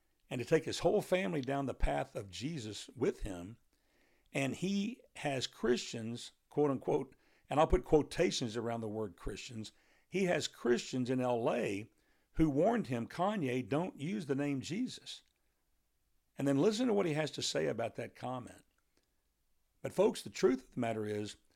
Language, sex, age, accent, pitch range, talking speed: English, male, 60-79, American, 110-150 Hz, 165 wpm